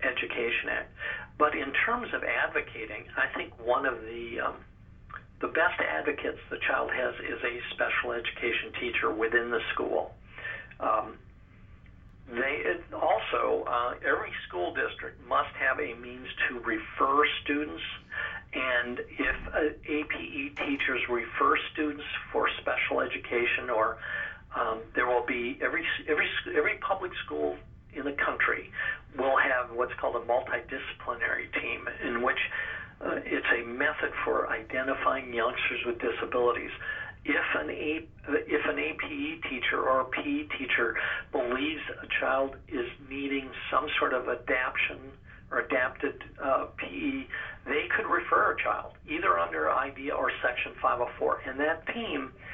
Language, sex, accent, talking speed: English, male, American, 135 wpm